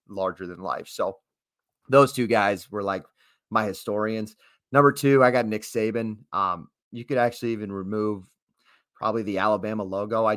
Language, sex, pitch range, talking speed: English, male, 100-120 Hz, 160 wpm